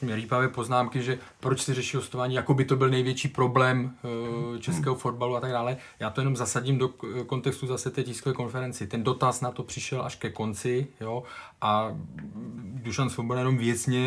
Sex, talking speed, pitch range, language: male, 180 wpm, 115-135 Hz, Czech